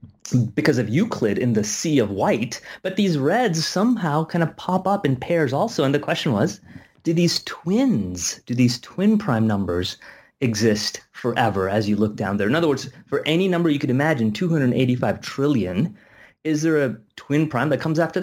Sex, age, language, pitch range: male, 30-49, English, 110-155 Hz